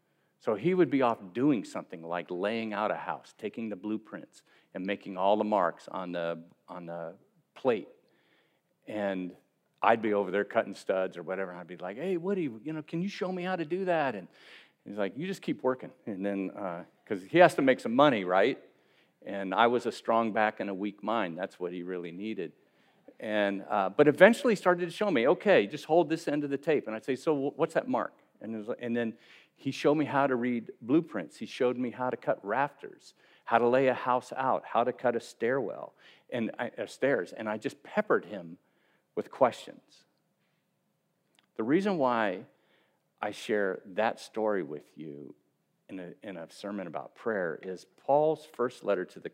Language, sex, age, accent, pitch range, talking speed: English, male, 50-69, American, 100-150 Hz, 205 wpm